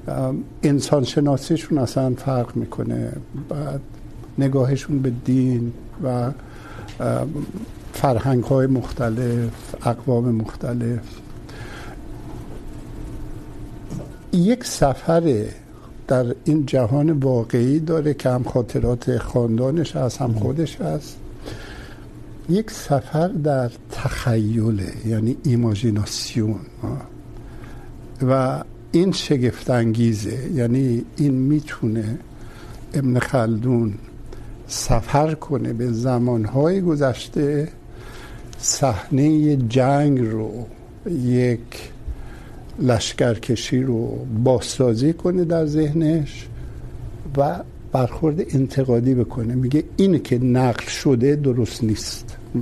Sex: male